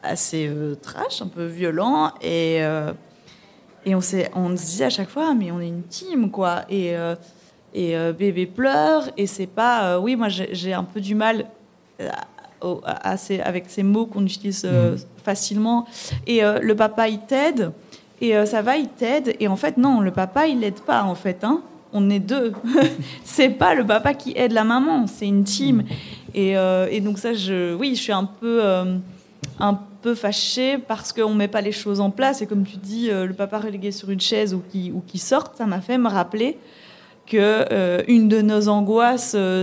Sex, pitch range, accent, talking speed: female, 185-230 Hz, French, 205 wpm